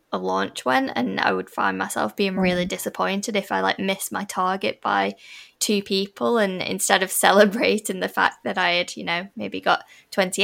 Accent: British